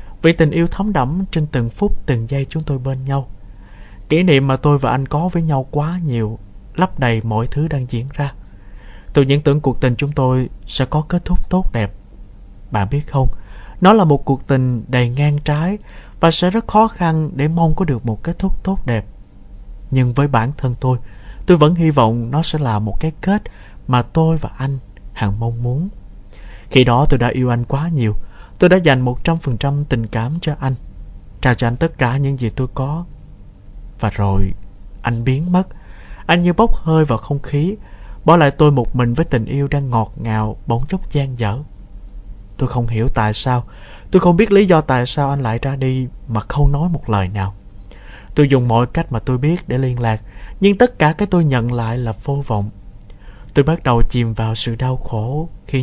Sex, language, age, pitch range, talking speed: male, Vietnamese, 20-39, 110-150 Hz, 210 wpm